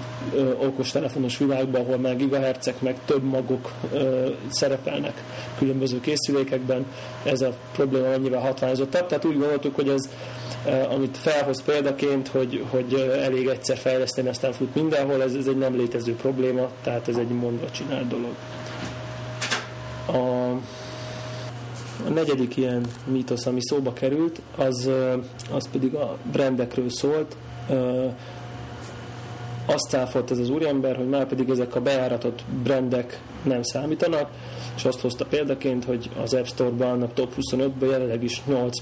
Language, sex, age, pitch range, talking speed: Hungarian, male, 30-49, 125-135 Hz, 130 wpm